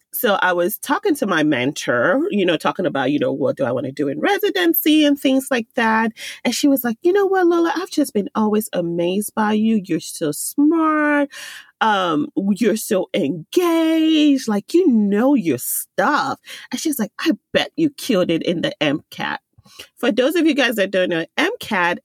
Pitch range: 170-280 Hz